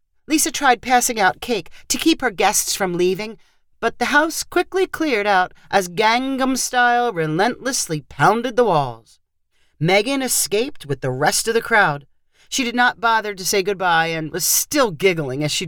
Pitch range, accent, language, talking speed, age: 160-240 Hz, American, English, 170 wpm, 40-59